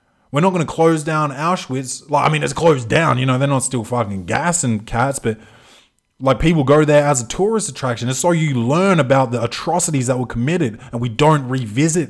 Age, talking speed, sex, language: 20-39, 220 wpm, male, English